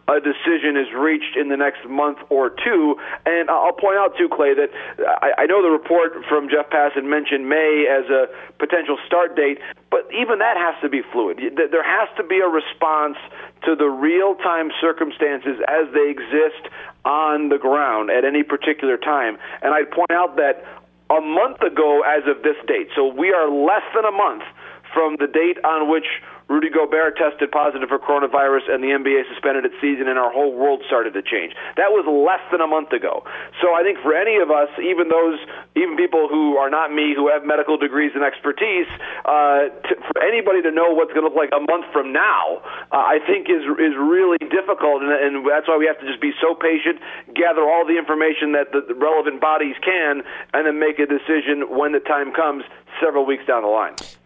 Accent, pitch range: American, 145-170 Hz